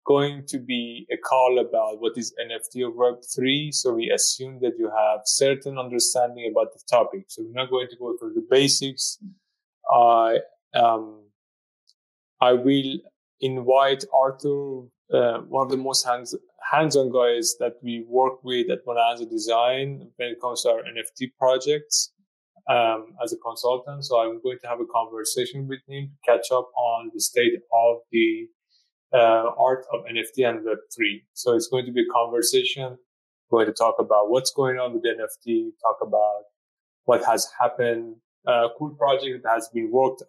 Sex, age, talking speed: male, 20-39, 175 wpm